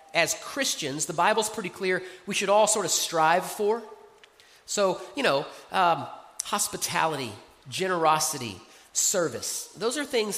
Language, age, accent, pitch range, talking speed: English, 30-49, American, 170-225 Hz, 135 wpm